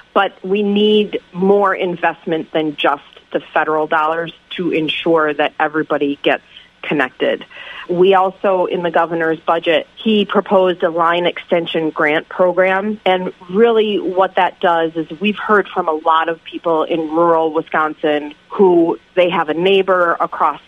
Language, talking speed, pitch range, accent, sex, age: English, 150 wpm, 155-185 Hz, American, female, 40-59